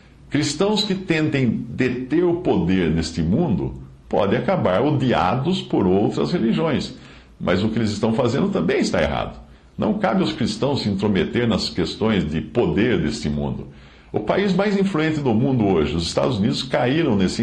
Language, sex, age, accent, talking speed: English, male, 60-79, Brazilian, 160 wpm